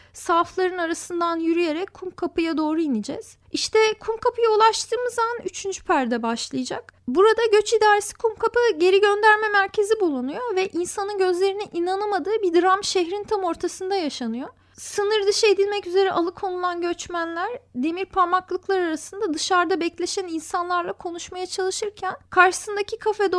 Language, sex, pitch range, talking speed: Turkish, female, 340-410 Hz, 130 wpm